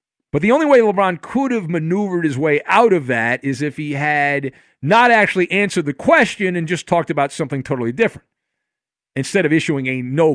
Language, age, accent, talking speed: English, 50-69, American, 195 wpm